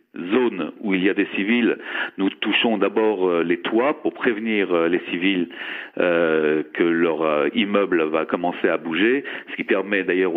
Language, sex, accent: French, male, French